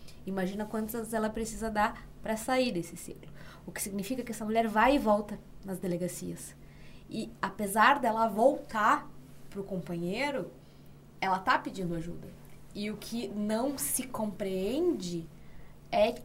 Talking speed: 135 wpm